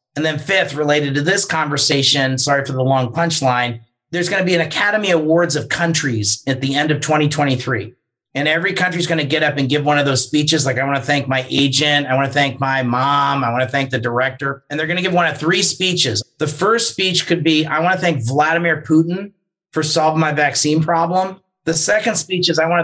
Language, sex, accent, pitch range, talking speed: English, male, American, 140-170 Hz, 235 wpm